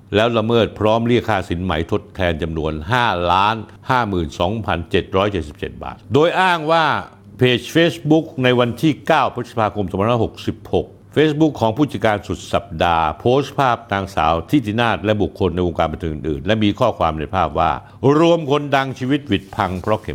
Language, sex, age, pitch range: Thai, male, 60-79, 90-115 Hz